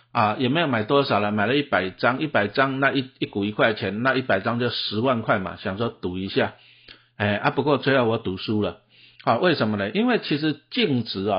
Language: Chinese